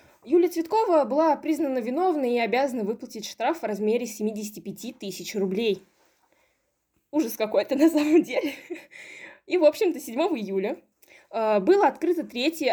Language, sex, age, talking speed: Russian, female, 20-39, 125 wpm